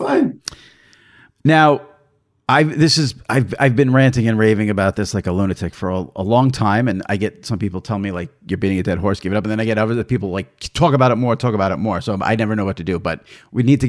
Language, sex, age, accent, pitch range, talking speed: English, male, 40-59, American, 100-135 Hz, 270 wpm